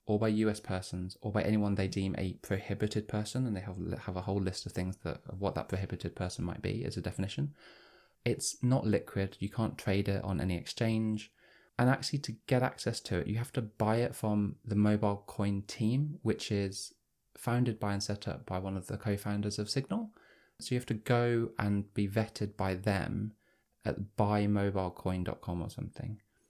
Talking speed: 195 wpm